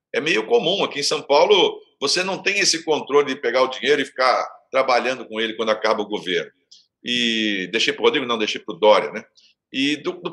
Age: 50-69